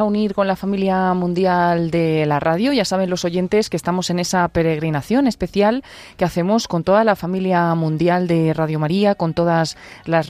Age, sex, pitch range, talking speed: 30-49, female, 160-210 Hz, 185 wpm